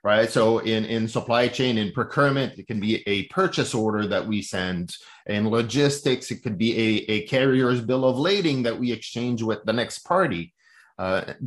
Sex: male